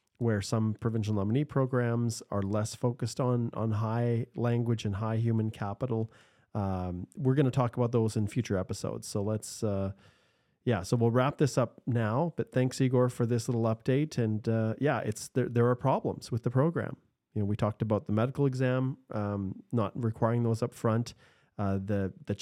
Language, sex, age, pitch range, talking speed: English, male, 30-49, 100-120 Hz, 185 wpm